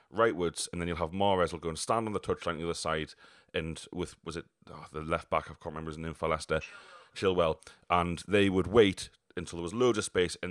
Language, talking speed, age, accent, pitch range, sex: English, 250 wpm, 30-49, British, 85-105 Hz, male